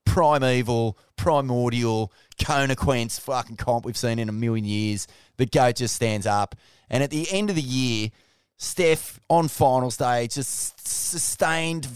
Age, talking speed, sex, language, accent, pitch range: 20-39, 145 wpm, male, English, Australian, 100-130 Hz